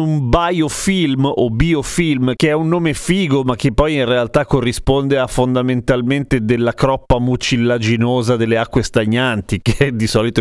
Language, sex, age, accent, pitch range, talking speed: Italian, male, 30-49, native, 120-170 Hz, 150 wpm